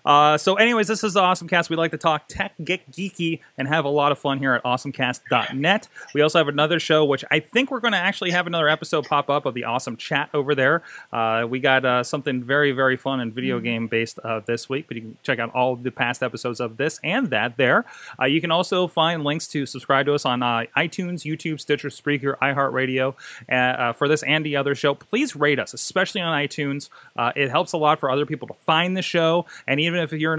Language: English